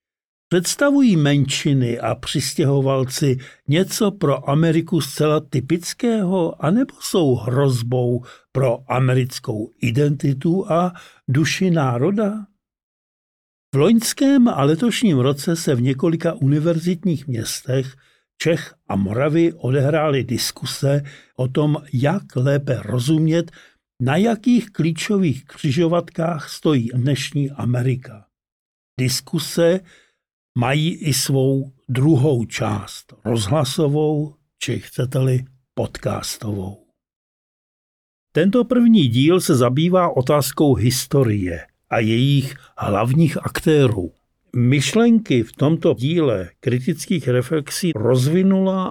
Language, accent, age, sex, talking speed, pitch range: Czech, native, 50-69, male, 90 wpm, 125-165 Hz